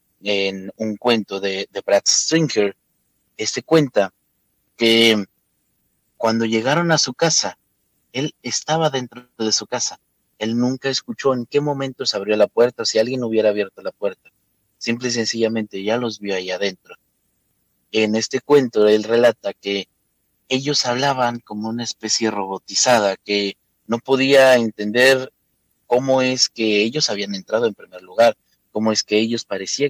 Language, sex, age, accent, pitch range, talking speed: Spanish, male, 30-49, Mexican, 100-125 Hz, 150 wpm